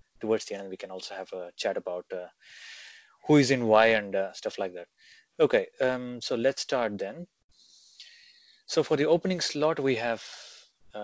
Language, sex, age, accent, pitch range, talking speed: English, male, 20-39, Indian, 105-135 Hz, 185 wpm